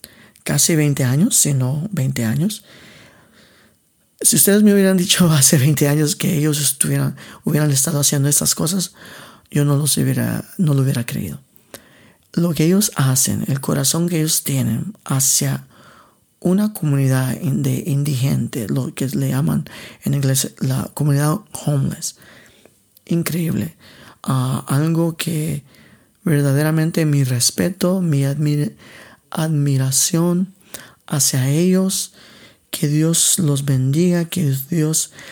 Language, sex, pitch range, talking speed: Spanish, male, 140-175 Hz, 120 wpm